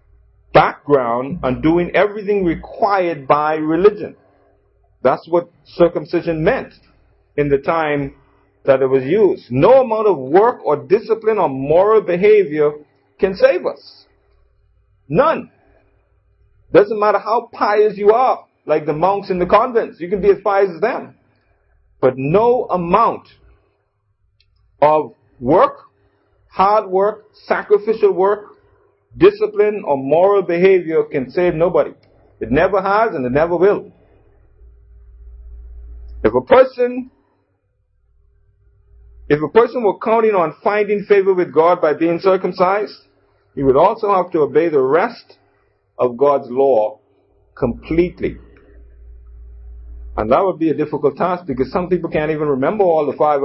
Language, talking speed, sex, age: English, 130 wpm, male, 50-69